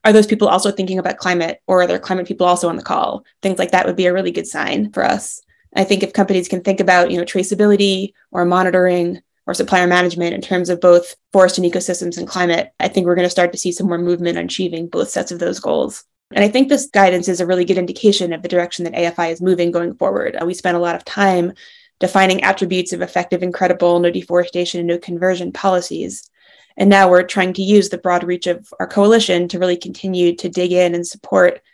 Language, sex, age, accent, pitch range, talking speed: English, female, 20-39, American, 175-190 Hz, 235 wpm